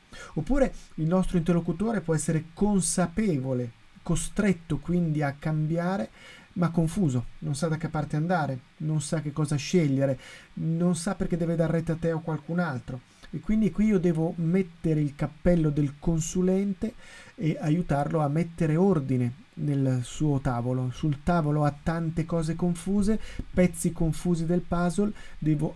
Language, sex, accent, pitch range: Italian, male, native, 150-175 Hz